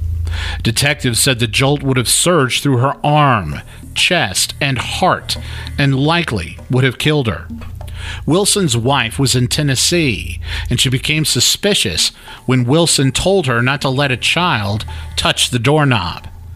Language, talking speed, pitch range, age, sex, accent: English, 145 wpm, 110-145 Hz, 50-69, male, American